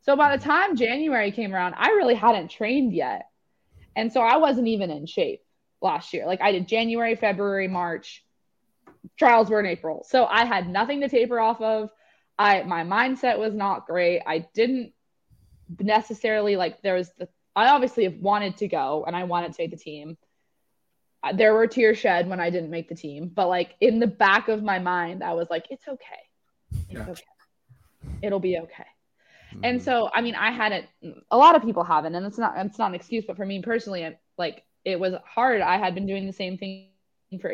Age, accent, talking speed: 20-39, American, 205 wpm